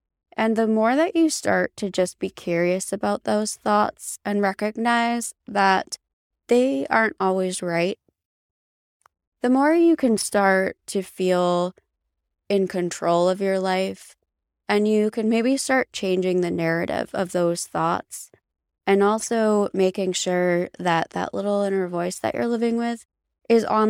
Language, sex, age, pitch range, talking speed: English, female, 20-39, 175-225 Hz, 145 wpm